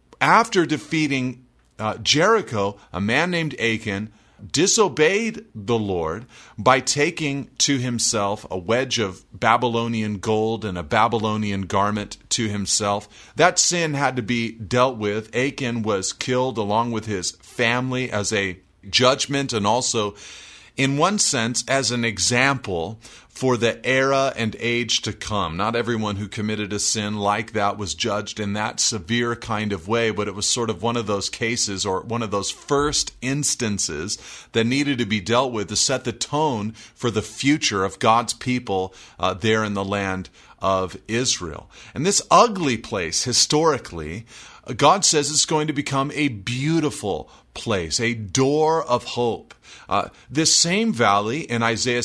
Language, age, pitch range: English, 40-59, 105-130 Hz